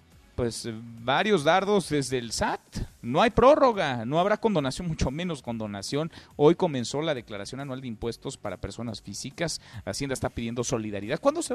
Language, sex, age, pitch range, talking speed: Spanish, male, 40-59, 120-180 Hz, 160 wpm